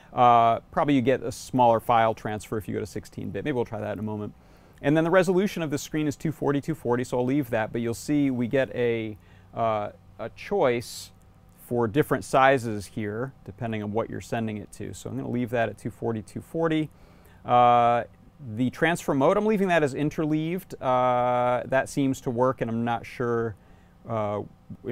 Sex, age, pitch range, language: male, 30-49, 110-140 Hz, English